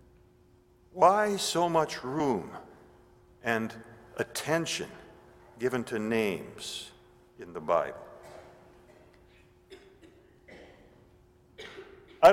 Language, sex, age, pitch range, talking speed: English, male, 50-69, 115-175 Hz, 65 wpm